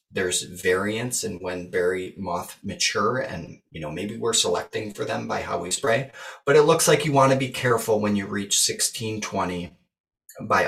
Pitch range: 105-135 Hz